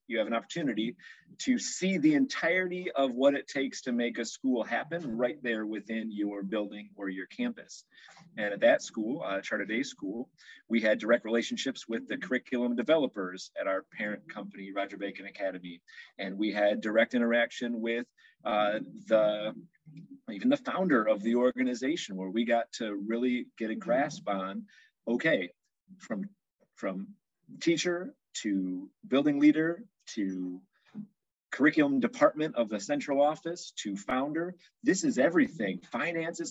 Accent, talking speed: American, 150 wpm